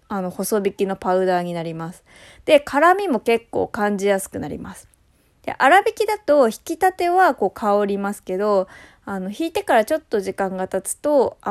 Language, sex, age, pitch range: Japanese, female, 20-39, 190-290 Hz